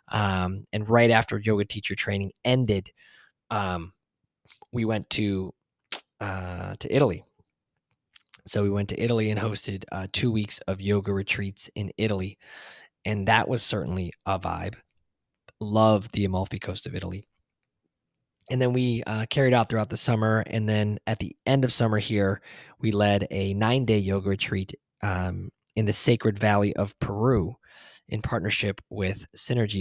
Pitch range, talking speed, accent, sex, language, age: 95-110 Hz, 155 wpm, American, male, English, 20-39